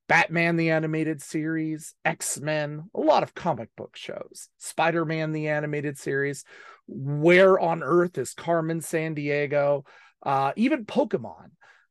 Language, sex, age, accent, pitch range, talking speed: English, male, 40-59, American, 140-185 Hz, 120 wpm